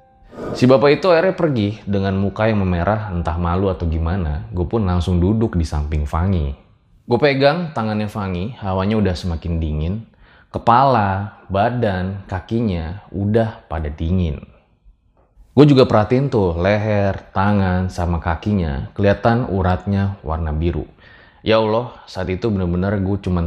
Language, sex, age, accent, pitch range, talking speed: Indonesian, male, 20-39, native, 85-115 Hz, 135 wpm